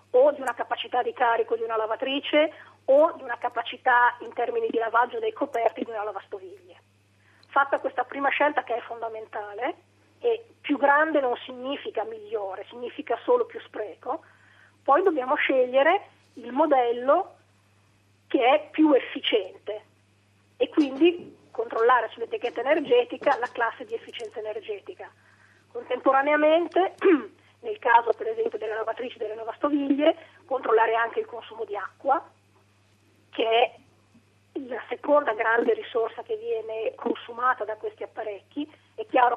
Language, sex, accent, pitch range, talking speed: Italian, female, native, 225-305 Hz, 135 wpm